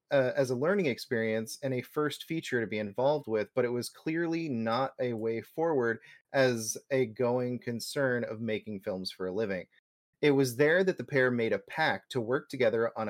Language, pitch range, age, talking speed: English, 110-140 Hz, 30-49, 200 wpm